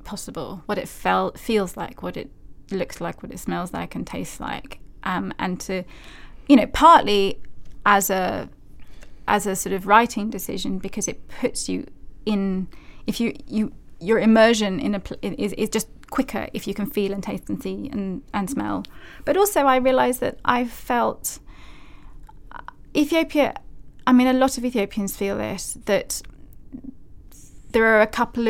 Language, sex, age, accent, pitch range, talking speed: English, female, 20-39, British, 190-230 Hz, 170 wpm